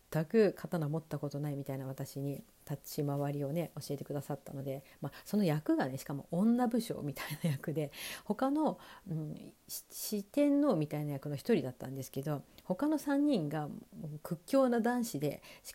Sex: female